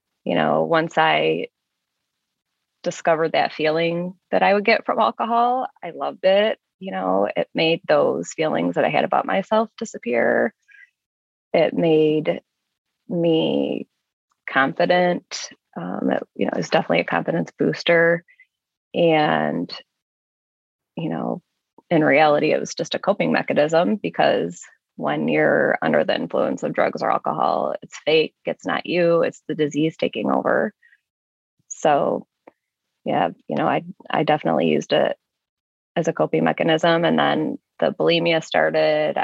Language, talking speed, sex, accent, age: English, 140 wpm, female, American, 20-39